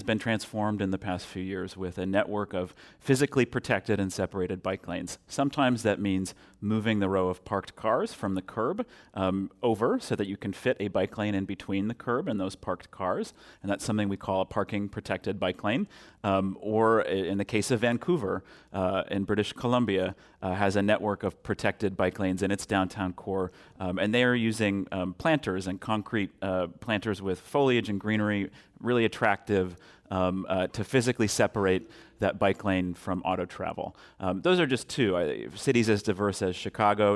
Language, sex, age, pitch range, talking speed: English, male, 30-49, 95-110 Hz, 190 wpm